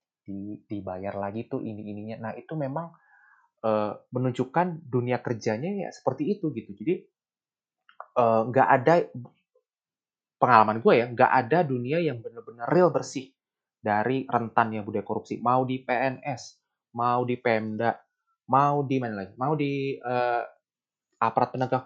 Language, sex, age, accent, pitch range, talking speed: Indonesian, male, 20-39, native, 110-160 Hz, 130 wpm